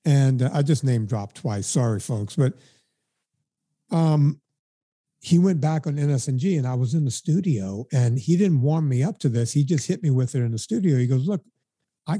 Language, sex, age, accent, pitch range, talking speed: English, male, 60-79, American, 130-165 Hz, 205 wpm